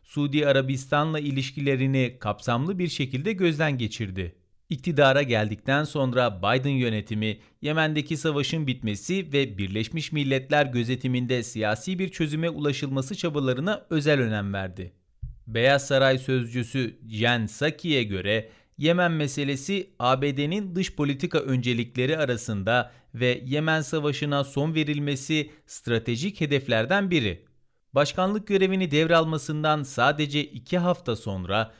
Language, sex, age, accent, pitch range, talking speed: Turkish, male, 40-59, native, 120-160 Hz, 105 wpm